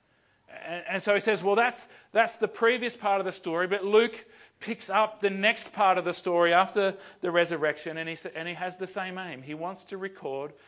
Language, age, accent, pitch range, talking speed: English, 40-59, Australian, 150-205 Hz, 220 wpm